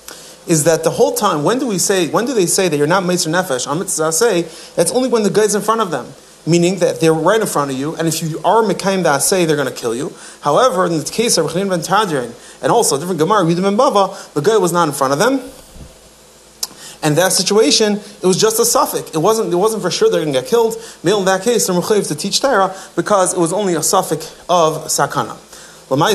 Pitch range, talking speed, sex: 155-200 Hz, 235 wpm, male